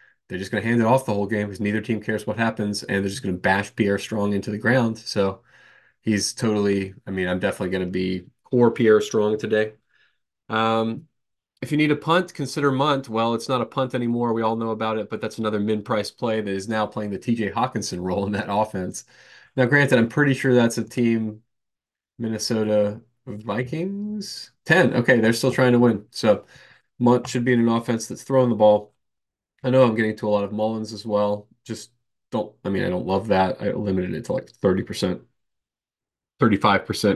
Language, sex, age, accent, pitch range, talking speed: English, male, 20-39, American, 105-125 Hz, 215 wpm